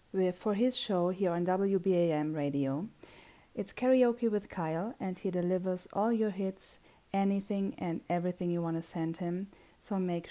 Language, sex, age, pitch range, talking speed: English, female, 40-59, 170-210 Hz, 155 wpm